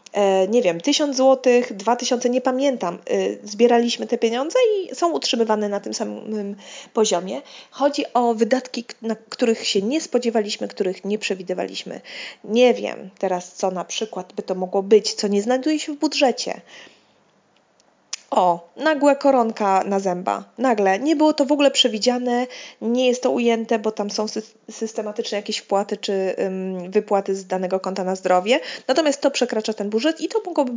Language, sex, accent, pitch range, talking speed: Polish, female, native, 185-245 Hz, 160 wpm